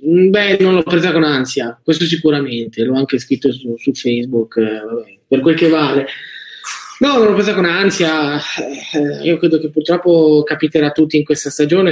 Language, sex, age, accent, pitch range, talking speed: Italian, male, 20-39, native, 150-170 Hz, 180 wpm